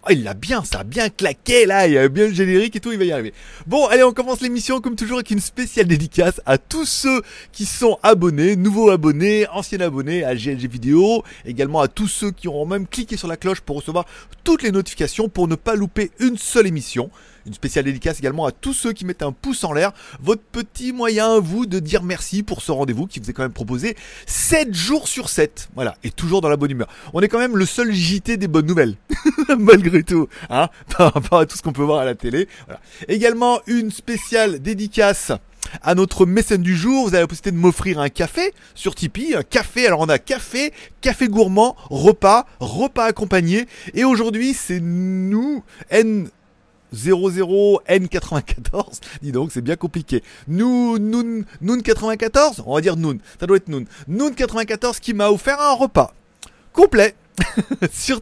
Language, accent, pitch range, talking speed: French, French, 170-235 Hz, 200 wpm